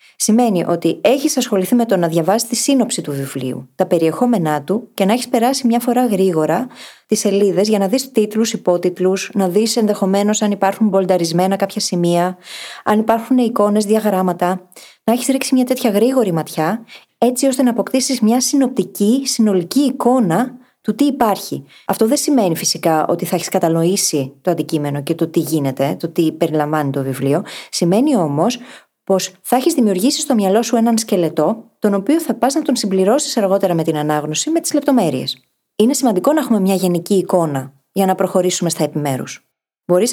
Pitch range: 175-240 Hz